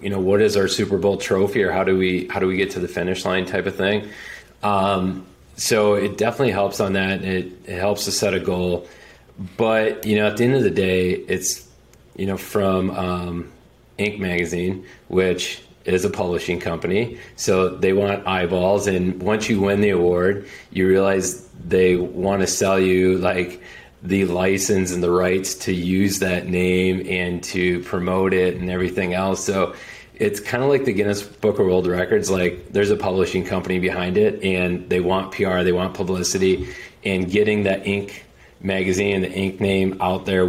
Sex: male